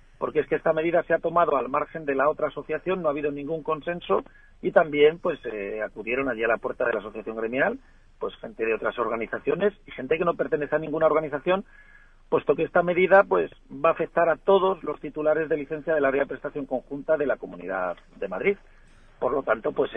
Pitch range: 130-180 Hz